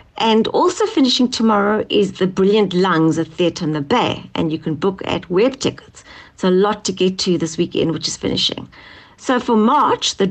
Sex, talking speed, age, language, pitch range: female, 205 wpm, 60-79, English, 185-255 Hz